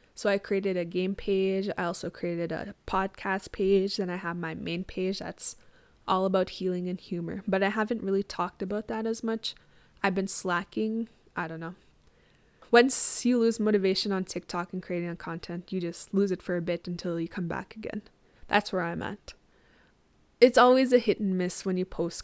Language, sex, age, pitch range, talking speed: English, female, 20-39, 180-205 Hz, 195 wpm